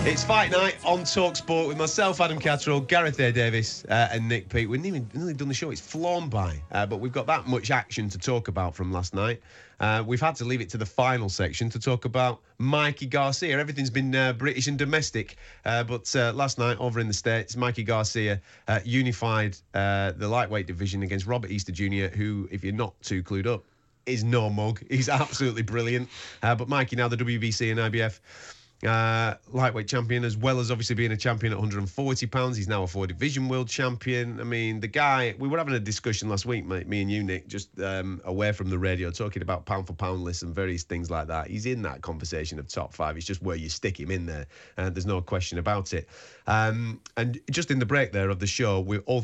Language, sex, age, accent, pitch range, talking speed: English, male, 30-49, British, 100-125 Hz, 230 wpm